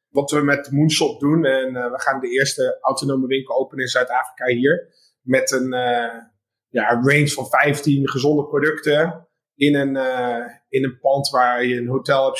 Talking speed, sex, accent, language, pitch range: 175 wpm, male, Dutch, Dutch, 135-155 Hz